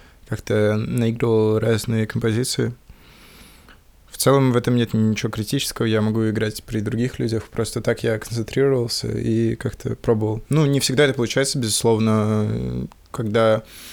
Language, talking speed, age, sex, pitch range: Russian, 135 wpm, 20-39, male, 110-120 Hz